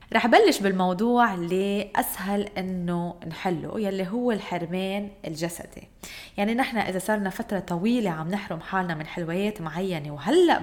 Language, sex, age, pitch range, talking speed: Arabic, female, 20-39, 175-220 Hz, 130 wpm